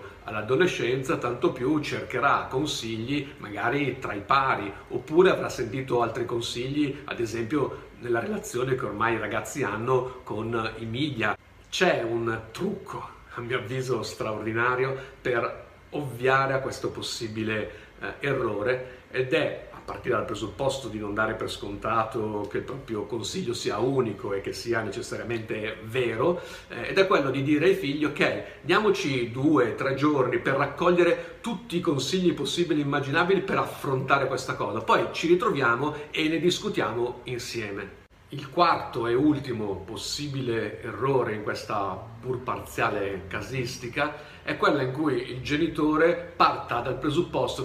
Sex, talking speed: male, 140 wpm